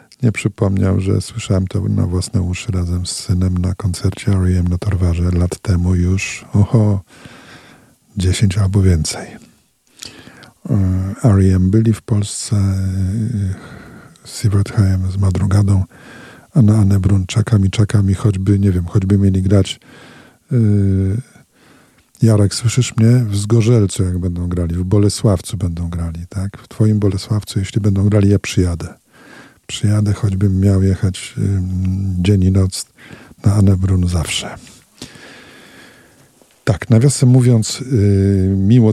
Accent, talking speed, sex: native, 125 wpm, male